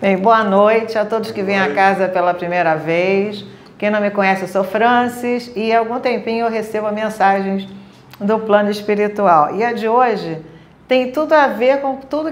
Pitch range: 205-270 Hz